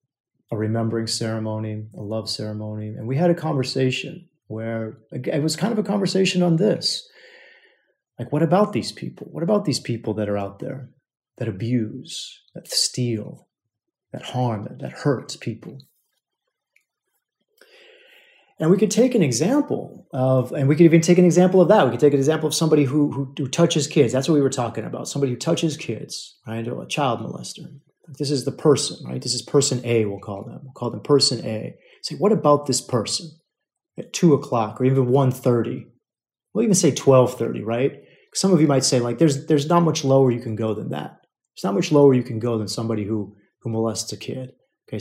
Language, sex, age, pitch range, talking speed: English, male, 30-49, 115-165 Hz, 200 wpm